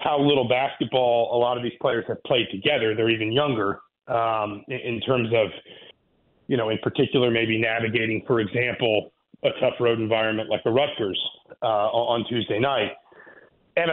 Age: 40-59